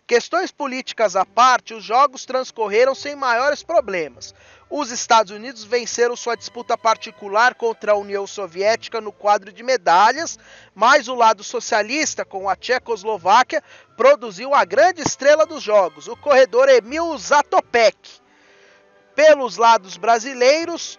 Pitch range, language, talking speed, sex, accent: 220-290 Hz, Portuguese, 130 wpm, male, Brazilian